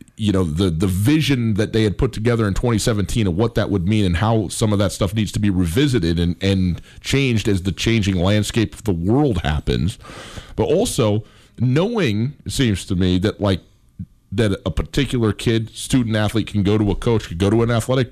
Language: English